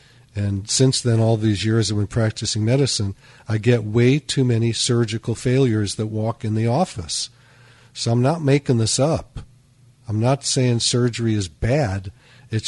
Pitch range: 110-130 Hz